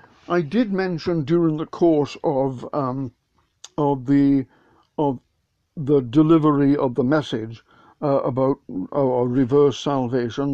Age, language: 60-79, English